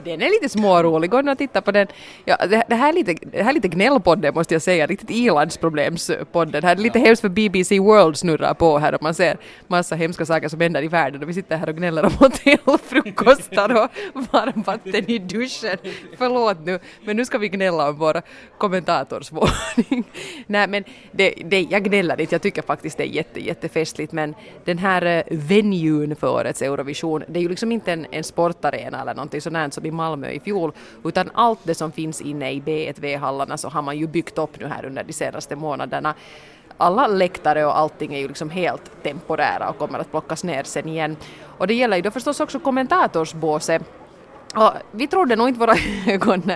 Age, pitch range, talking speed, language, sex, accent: 30-49, 155-215 Hz, 200 wpm, Finnish, female, native